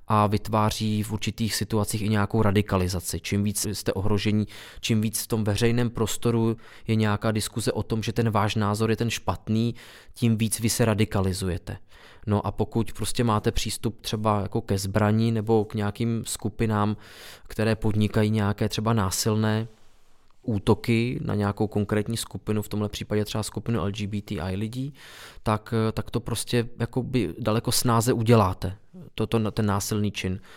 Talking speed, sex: 155 wpm, male